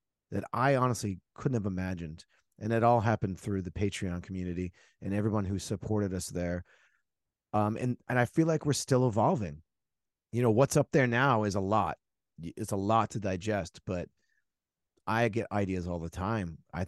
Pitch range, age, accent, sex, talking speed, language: 95-120 Hz, 30-49, American, male, 180 wpm, English